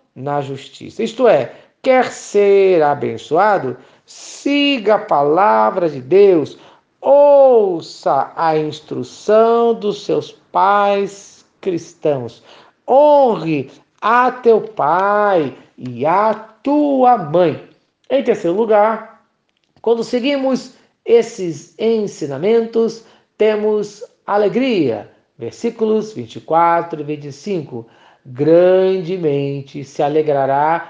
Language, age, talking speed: Portuguese, 50-69, 85 wpm